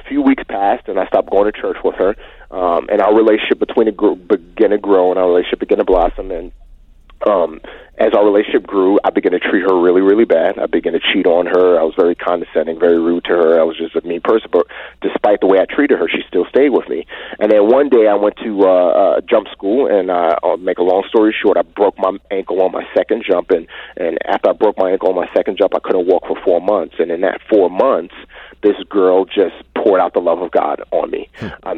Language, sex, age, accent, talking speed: English, male, 30-49, American, 250 wpm